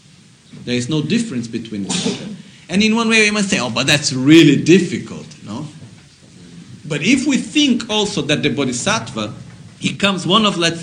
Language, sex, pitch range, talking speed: Italian, male, 135-190 Hz, 170 wpm